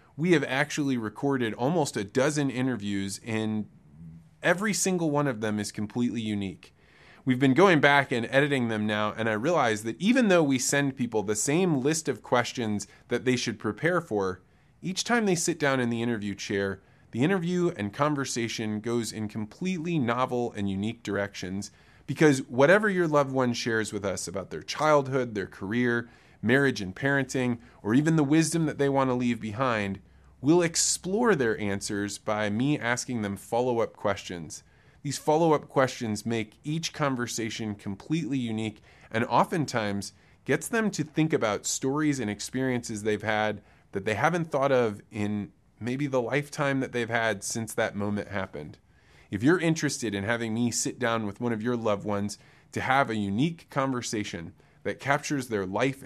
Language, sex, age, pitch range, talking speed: English, male, 20-39, 105-145 Hz, 170 wpm